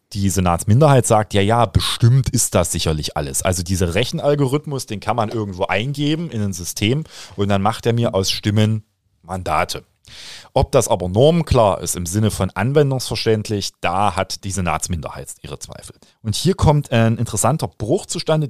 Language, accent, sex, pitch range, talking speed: German, German, male, 100-130 Hz, 165 wpm